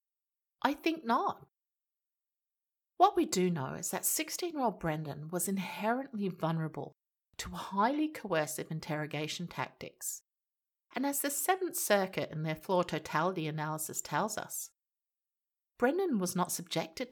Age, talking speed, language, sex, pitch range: 50-69, 125 wpm, English, female, 165-245 Hz